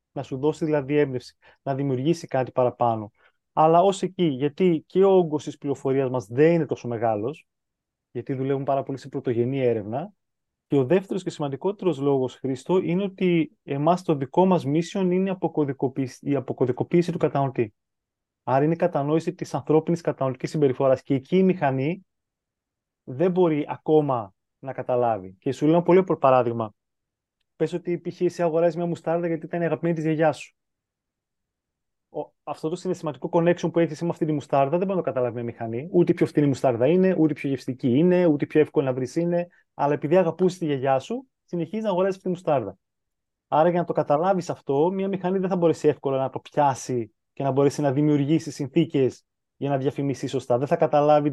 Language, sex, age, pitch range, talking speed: Greek, male, 20-39, 135-170 Hz, 185 wpm